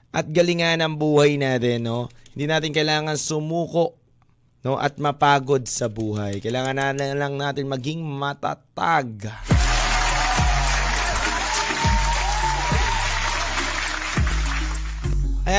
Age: 20-39